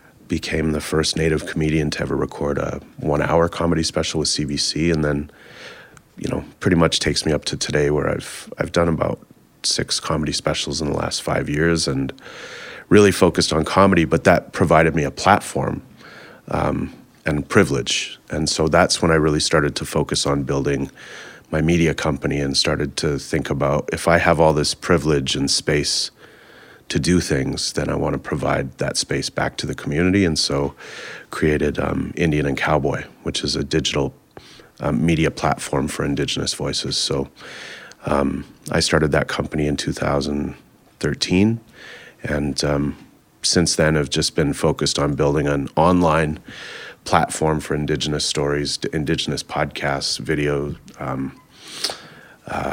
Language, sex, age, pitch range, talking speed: English, male, 30-49, 70-80 Hz, 160 wpm